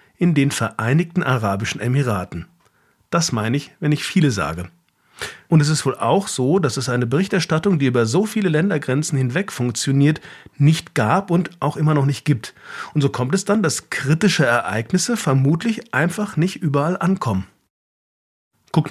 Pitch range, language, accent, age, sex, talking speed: 125-170 Hz, German, German, 40-59, male, 160 wpm